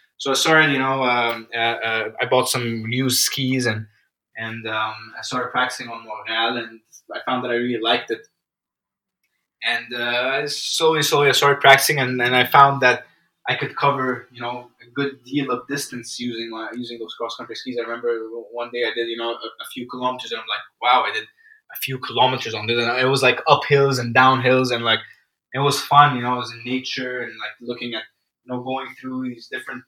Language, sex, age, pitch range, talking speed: English, male, 20-39, 120-135 Hz, 220 wpm